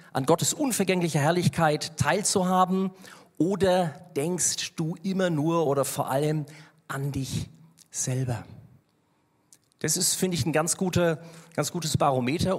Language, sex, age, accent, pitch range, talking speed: German, male, 40-59, German, 135-170 Hz, 125 wpm